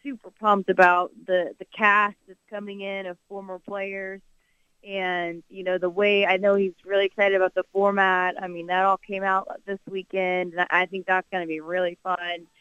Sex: female